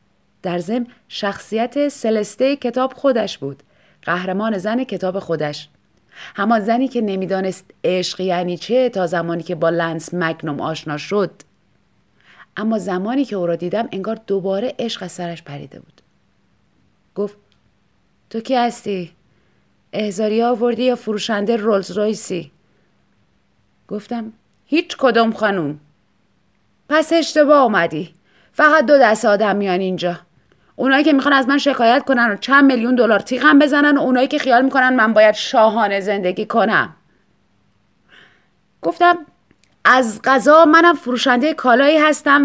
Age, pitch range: 30-49, 190-270 Hz